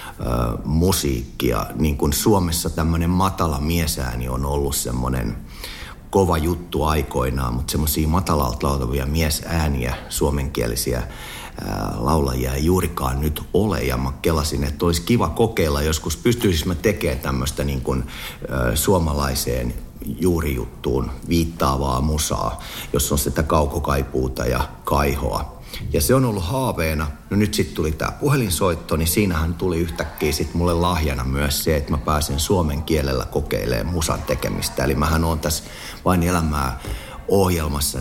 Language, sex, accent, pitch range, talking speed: Finnish, male, native, 70-85 Hz, 125 wpm